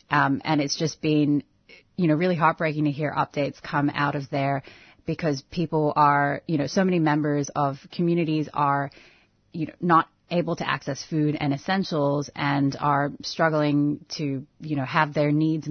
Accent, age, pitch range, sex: American, 30-49, 140-155 Hz, female